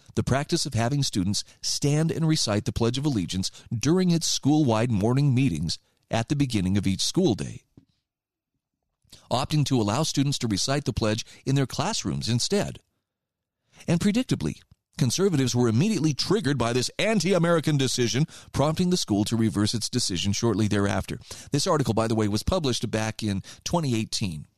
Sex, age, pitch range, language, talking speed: male, 40-59, 110-150 Hz, English, 160 wpm